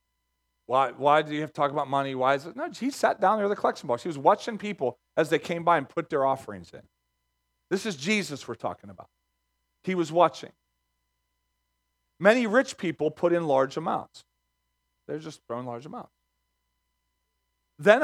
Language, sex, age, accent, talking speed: English, male, 40-59, American, 185 wpm